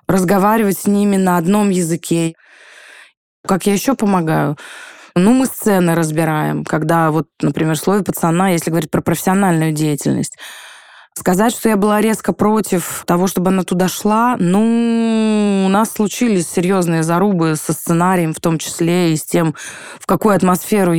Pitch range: 165-205 Hz